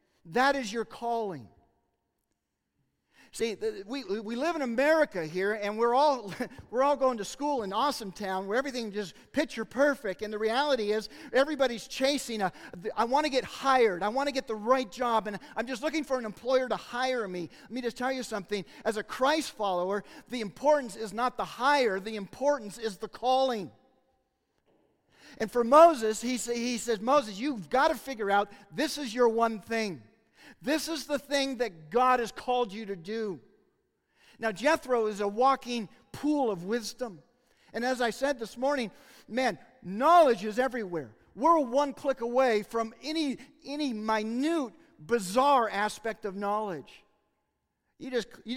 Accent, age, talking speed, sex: American, 50-69, 170 wpm, male